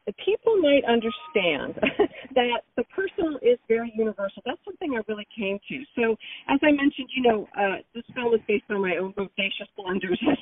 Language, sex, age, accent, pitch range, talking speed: English, female, 50-69, American, 200-275 Hz, 185 wpm